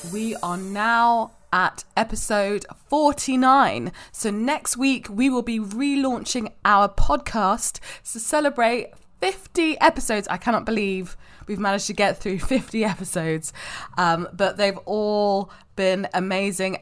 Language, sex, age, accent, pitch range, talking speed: English, female, 20-39, British, 190-245 Hz, 125 wpm